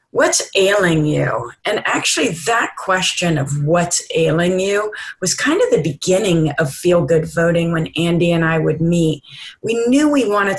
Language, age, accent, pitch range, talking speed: English, 40-59, American, 160-195 Hz, 165 wpm